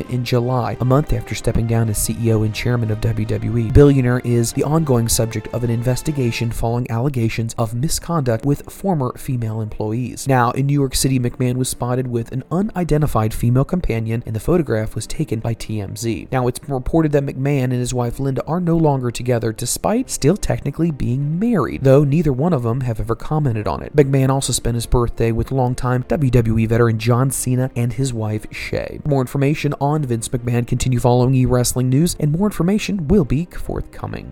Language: English